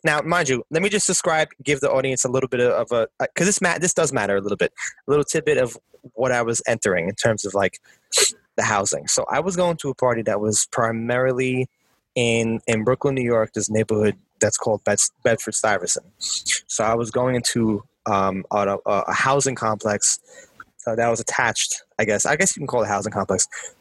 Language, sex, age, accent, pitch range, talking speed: English, male, 20-39, American, 115-150 Hz, 210 wpm